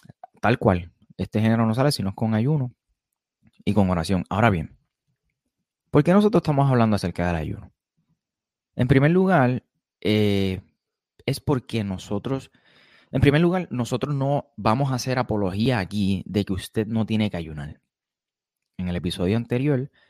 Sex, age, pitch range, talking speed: male, 30-49, 95-125 Hz, 150 wpm